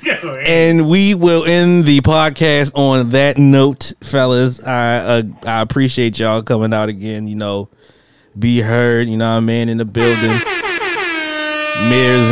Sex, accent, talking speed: male, American, 150 wpm